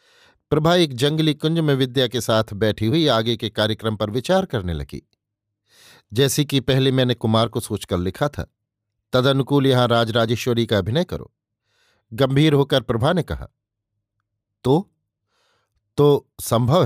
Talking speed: 145 wpm